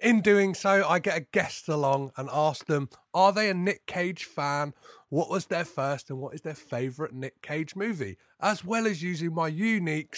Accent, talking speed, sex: British, 205 wpm, male